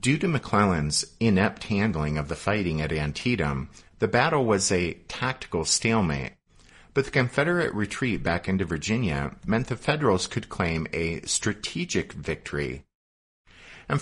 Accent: American